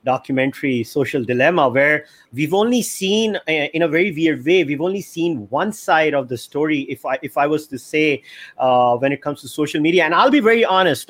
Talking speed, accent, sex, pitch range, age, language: 210 wpm, Indian, male, 135-180 Hz, 30-49, English